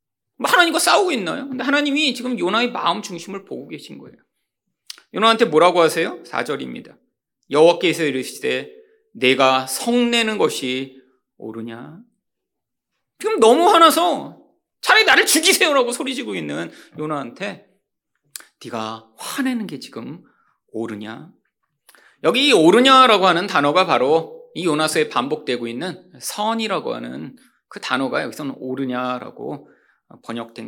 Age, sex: 30-49, male